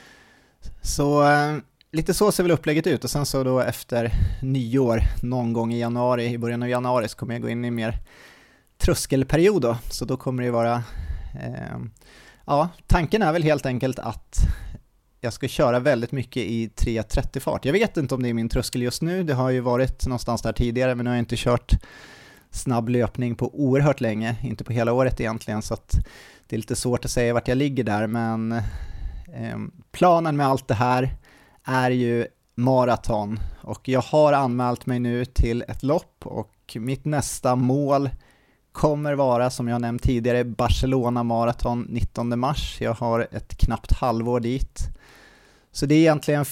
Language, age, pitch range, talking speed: Swedish, 30-49, 115-135 Hz, 175 wpm